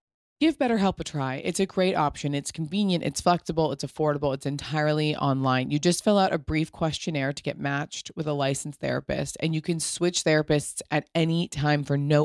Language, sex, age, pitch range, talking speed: English, female, 20-39, 145-190 Hz, 200 wpm